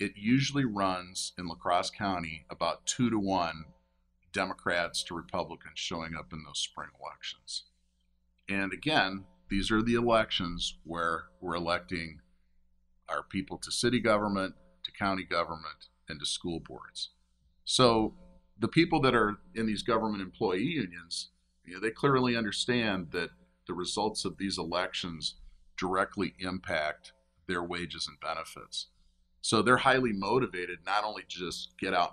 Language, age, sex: English, 50-69, male